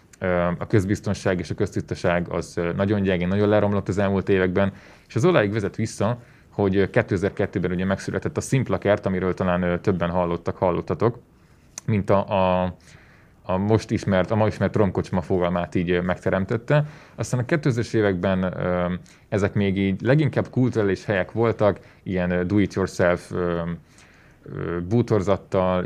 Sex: male